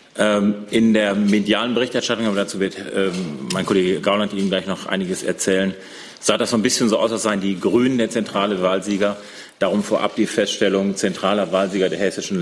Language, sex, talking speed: German, male, 180 wpm